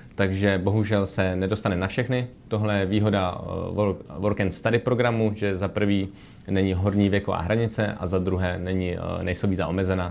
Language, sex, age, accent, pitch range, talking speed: Czech, male, 20-39, native, 90-105 Hz, 165 wpm